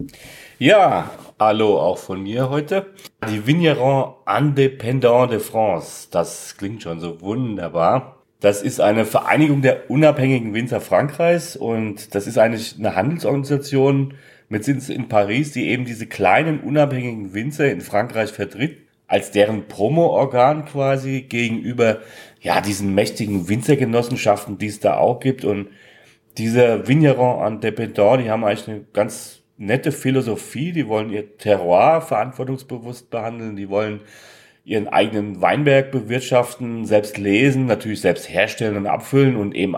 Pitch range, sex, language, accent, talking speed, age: 105-135 Hz, male, German, German, 135 wpm, 30-49